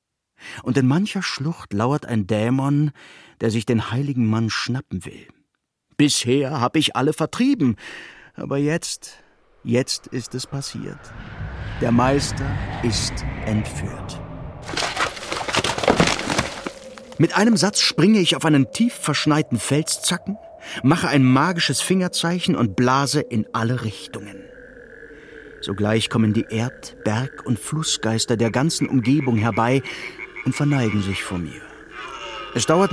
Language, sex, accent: German, male, German